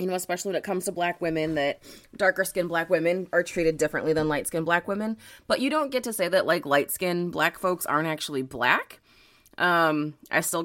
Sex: female